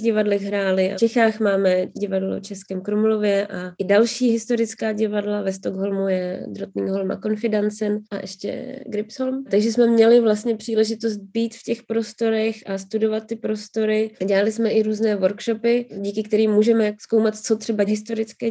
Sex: female